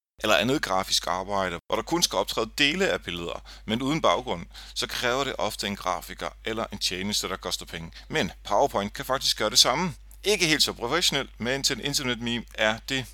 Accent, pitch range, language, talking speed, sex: native, 105-135 Hz, Danish, 200 wpm, male